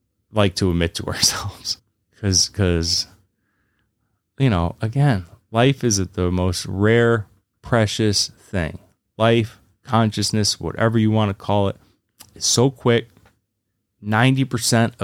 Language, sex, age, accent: English, male, 20-39, American